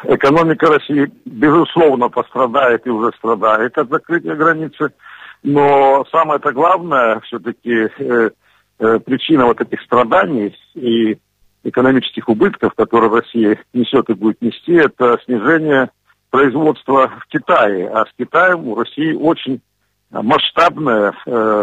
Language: Russian